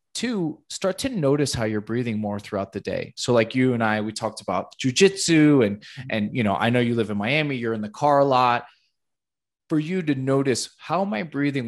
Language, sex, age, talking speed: English, male, 20-39, 225 wpm